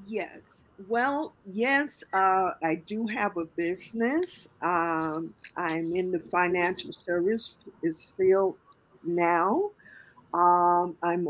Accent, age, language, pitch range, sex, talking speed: American, 50-69, English, 175-225 Hz, female, 100 wpm